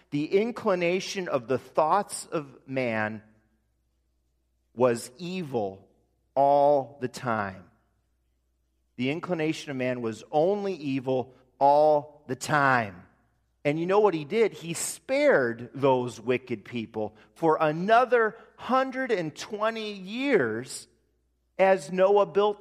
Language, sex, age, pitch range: English, male, 40-59, 125-195 Hz